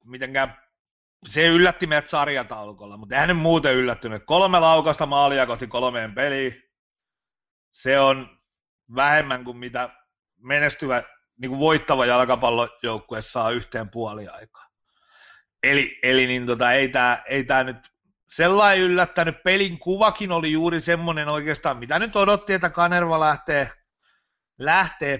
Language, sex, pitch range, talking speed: Finnish, male, 130-170 Hz, 120 wpm